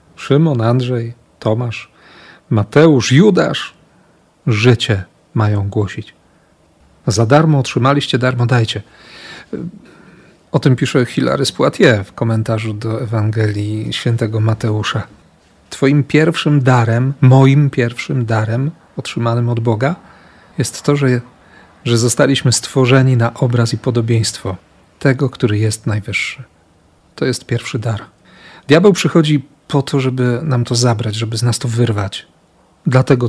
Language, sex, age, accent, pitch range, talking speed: Polish, male, 40-59, native, 115-140 Hz, 115 wpm